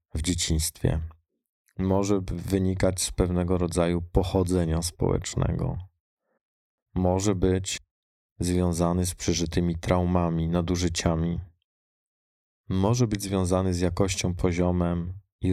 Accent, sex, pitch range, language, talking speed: native, male, 85-95 Hz, Polish, 90 wpm